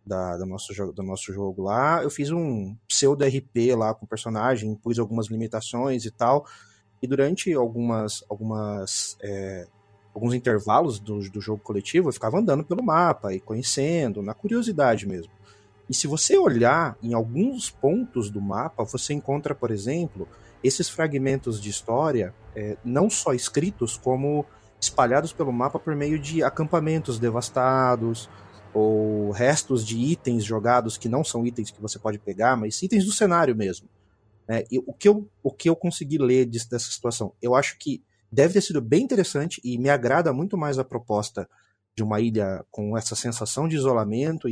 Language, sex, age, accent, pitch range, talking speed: Portuguese, male, 30-49, Brazilian, 105-140 Hz, 170 wpm